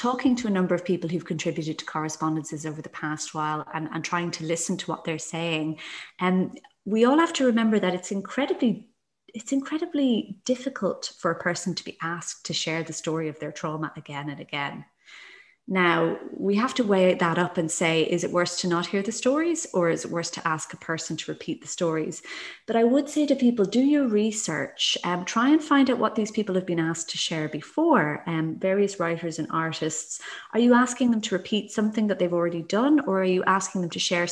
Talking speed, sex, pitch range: 220 wpm, female, 165-230 Hz